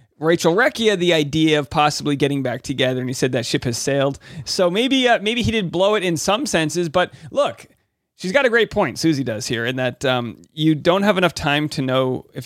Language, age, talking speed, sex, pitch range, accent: English, 30-49, 230 wpm, male, 150-200 Hz, American